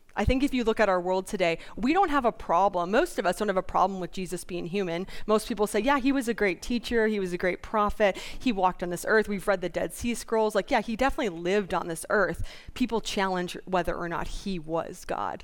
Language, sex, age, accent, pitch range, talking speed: English, female, 30-49, American, 180-225 Hz, 255 wpm